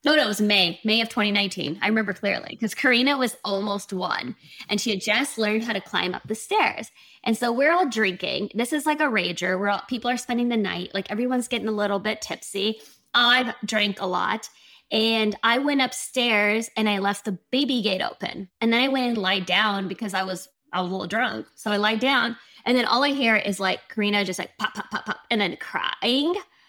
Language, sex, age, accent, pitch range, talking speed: English, female, 20-39, American, 195-245 Hz, 225 wpm